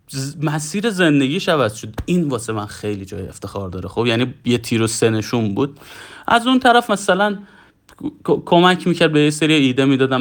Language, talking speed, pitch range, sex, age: Persian, 175 wpm, 120-165 Hz, male, 30-49